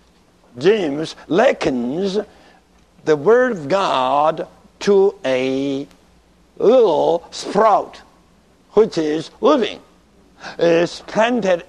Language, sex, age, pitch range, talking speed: English, male, 60-79, 165-225 Hz, 80 wpm